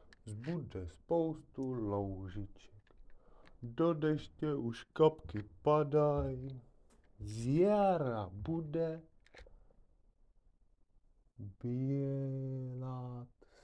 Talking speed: 55 wpm